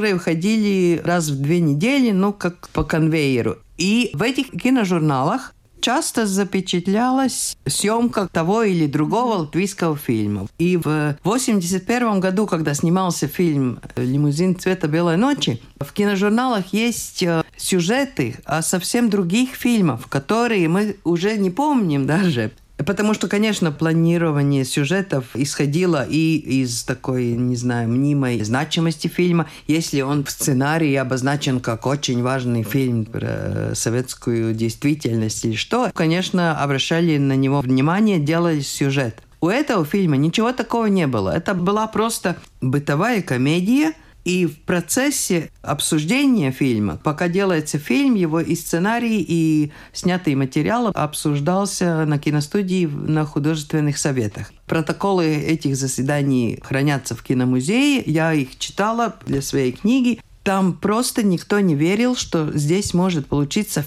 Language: Russian